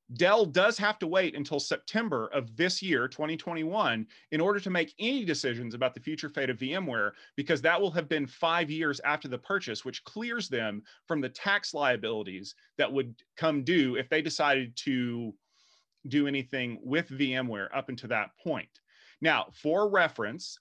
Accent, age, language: American, 30-49, English